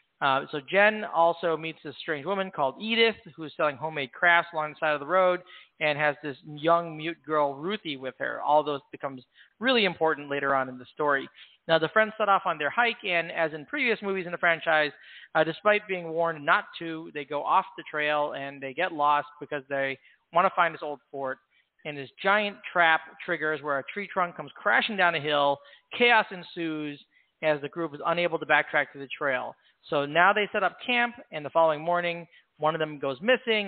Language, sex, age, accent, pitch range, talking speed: English, male, 40-59, American, 150-185 Hz, 215 wpm